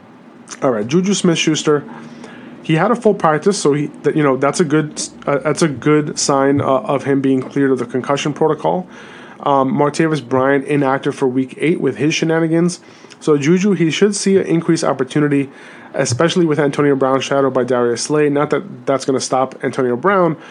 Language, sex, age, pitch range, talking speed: English, male, 30-49, 135-160 Hz, 190 wpm